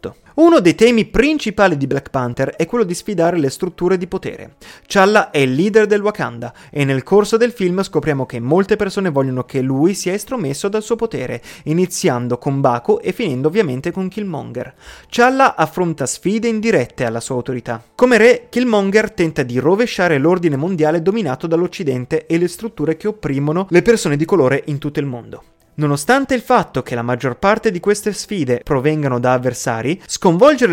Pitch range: 135-205 Hz